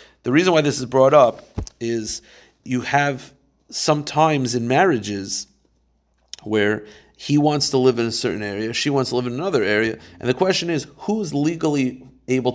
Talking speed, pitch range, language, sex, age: 170 wpm, 115-160 Hz, English, male, 40-59